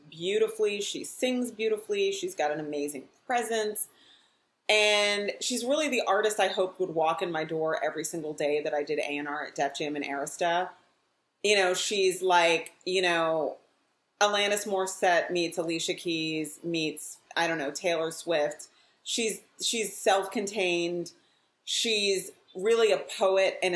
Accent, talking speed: American, 145 wpm